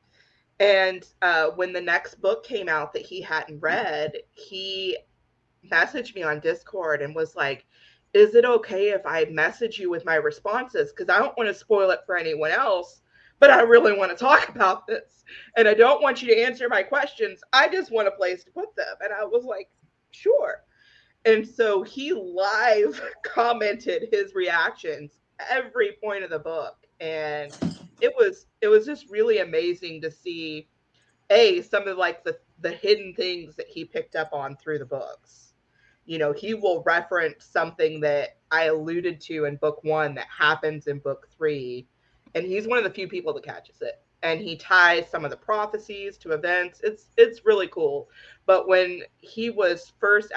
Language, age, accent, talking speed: English, 30-49, American, 185 wpm